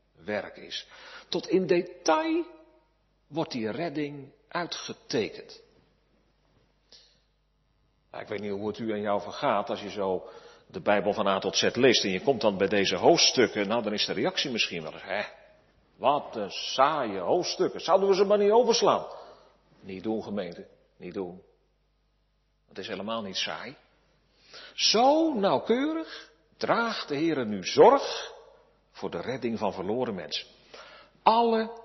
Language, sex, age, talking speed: Dutch, male, 50-69, 145 wpm